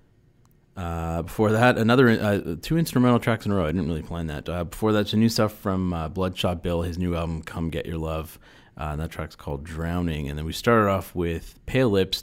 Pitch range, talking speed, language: 80-110 Hz, 230 wpm, English